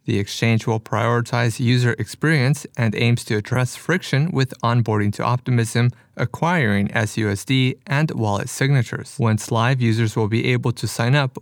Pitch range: 115-135 Hz